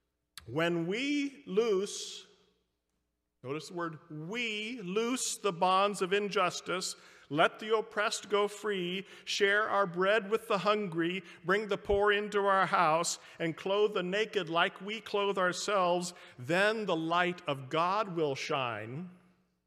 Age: 50-69